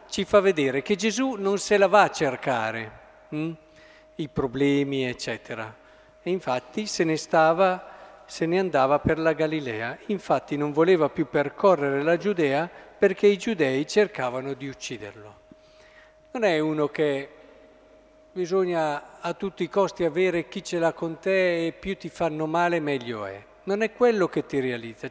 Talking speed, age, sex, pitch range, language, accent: 160 wpm, 50-69, male, 145-185 Hz, Italian, native